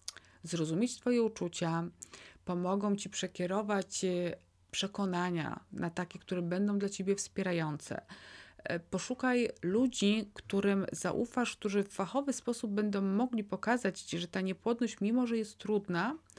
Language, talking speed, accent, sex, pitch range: Polish, 120 wpm, native, female, 175-200 Hz